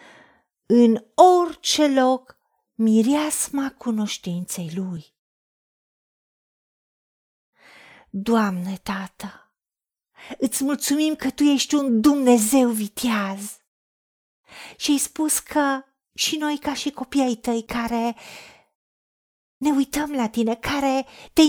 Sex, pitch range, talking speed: female, 230-300 Hz, 95 wpm